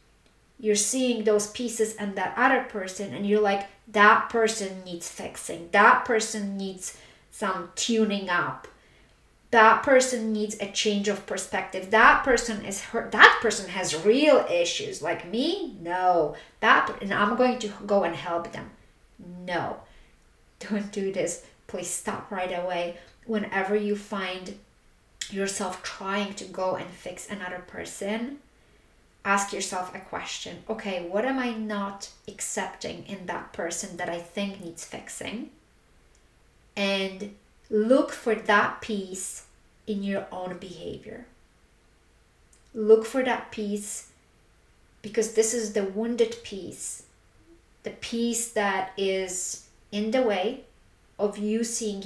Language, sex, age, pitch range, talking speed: English, female, 30-49, 185-220 Hz, 135 wpm